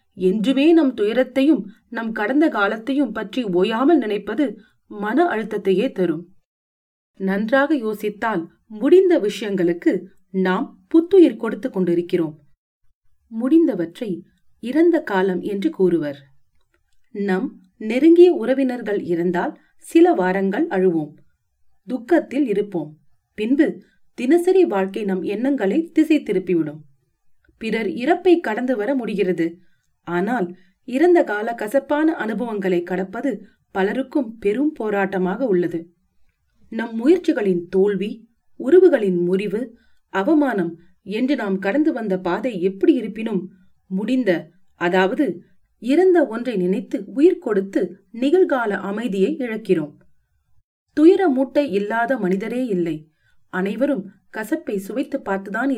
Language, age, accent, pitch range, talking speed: Tamil, 30-49, native, 185-275 Hz, 85 wpm